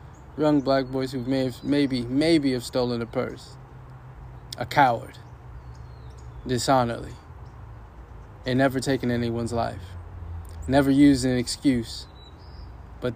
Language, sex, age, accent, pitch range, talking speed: English, male, 20-39, American, 95-130 Hz, 115 wpm